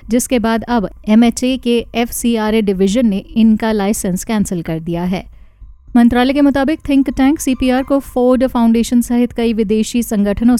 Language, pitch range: Hindi, 205-245 Hz